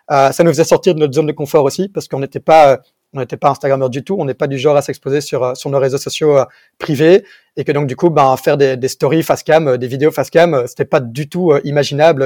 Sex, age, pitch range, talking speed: male, 30-49, 135-165 Hz, 285 wpm